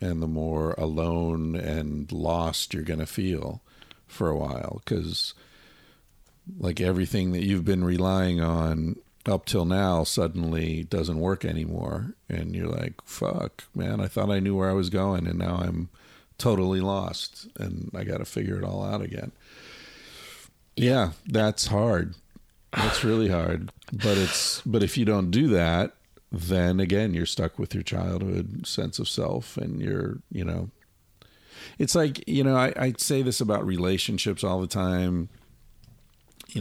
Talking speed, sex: 155 wpm, male